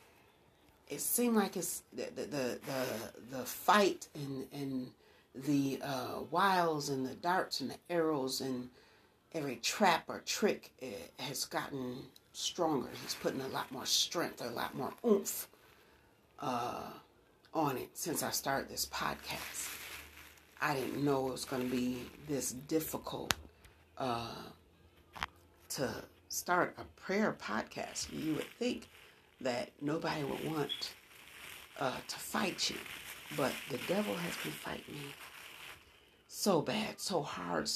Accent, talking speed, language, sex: American, 135 wpm, English, female